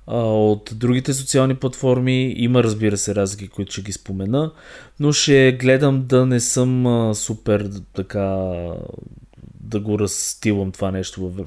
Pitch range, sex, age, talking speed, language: 100-130 Hz, male, 20-39, 130 wpm, Bulgarian